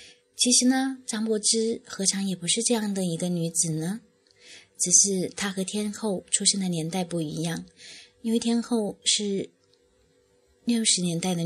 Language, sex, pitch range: Chinese, female, 170-205 Hz